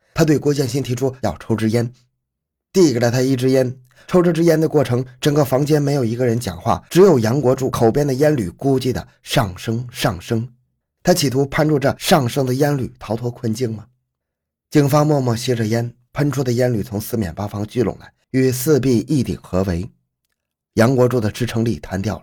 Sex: male